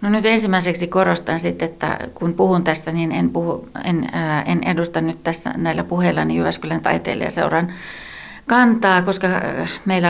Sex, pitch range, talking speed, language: female, 170-195 Hz, 145 wpm, Finnish